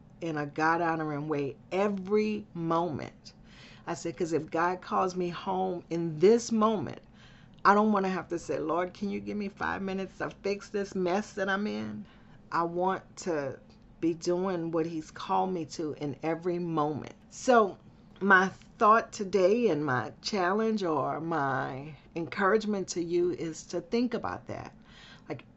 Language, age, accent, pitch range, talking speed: English, 40-59, American, 155-200 Hz, 160 wpm